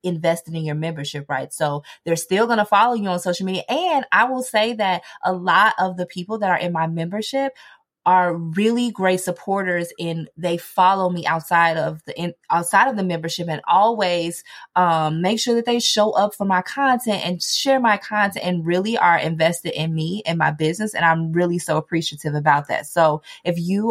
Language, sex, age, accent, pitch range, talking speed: English, female, 20-39, American, 165-210 Hz, 200 wpm